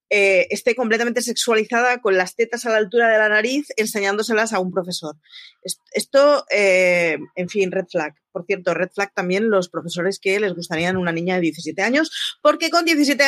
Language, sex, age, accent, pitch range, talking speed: Spanish, female, 30-49, Spanish, 190-275 Hz, 185 wpm